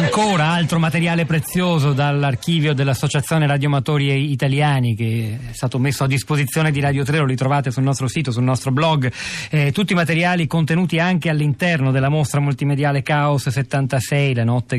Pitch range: 120-150 Hz